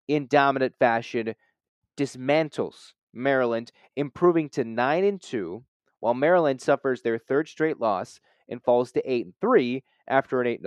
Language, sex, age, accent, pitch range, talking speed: English, male, 30-49, American, 125-150 Hz, 120 wpm